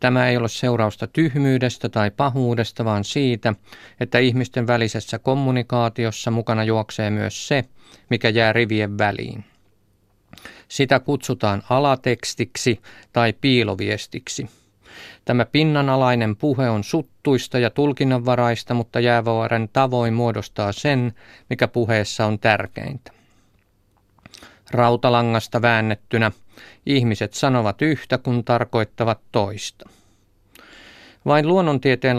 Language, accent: Finnish, native